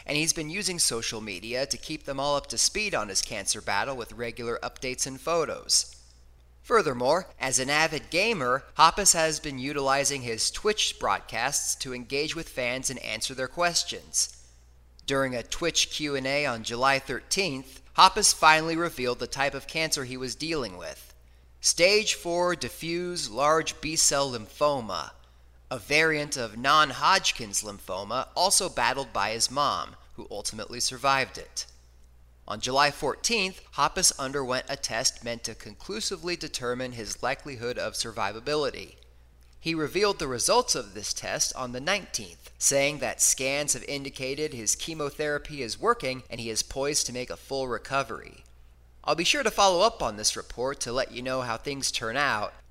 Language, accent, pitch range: English, American, 115-155 Hz